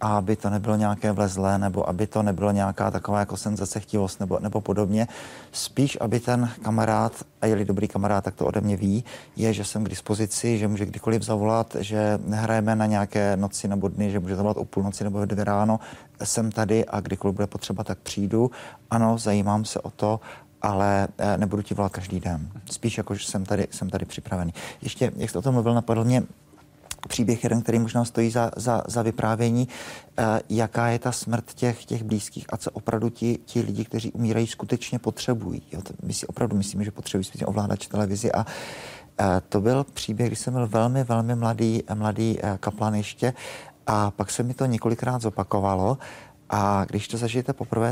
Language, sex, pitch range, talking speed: Czech, male, 100-115 Hz, 195 wpm